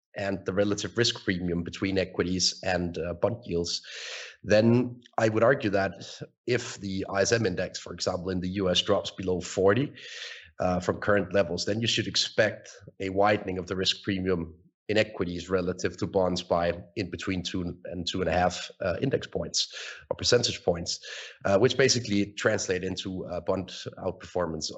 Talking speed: 170 wpm